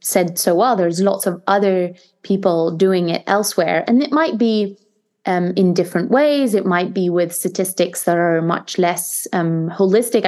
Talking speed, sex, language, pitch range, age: 175 wpm, female, English, 175-200 Hz, 20-39